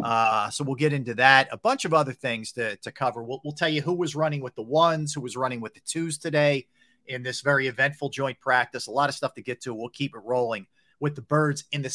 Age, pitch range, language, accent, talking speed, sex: 40-59, 115-150 Hz, English, American, 265 wpm, male